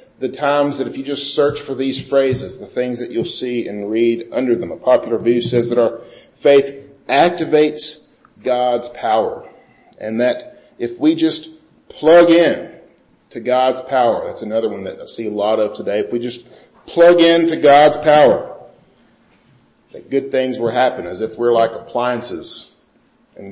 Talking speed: 175 wpm